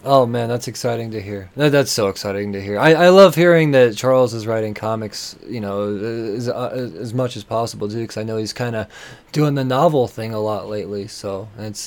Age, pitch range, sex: 20-39, 100-130 Hz, male